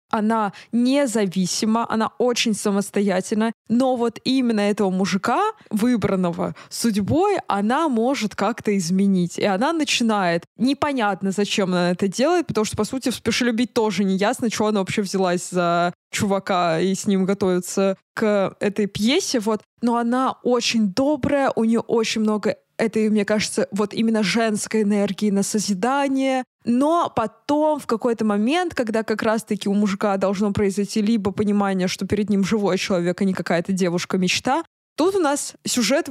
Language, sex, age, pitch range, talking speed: Russian, female, 20-39, 200-245 Hz, 150 wpm